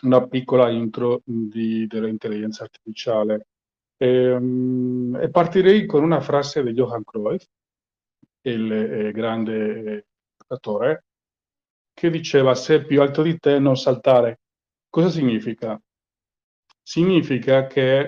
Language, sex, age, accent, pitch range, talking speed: Italian, male, 40-59, native, 125-150 Hz, 105 wpm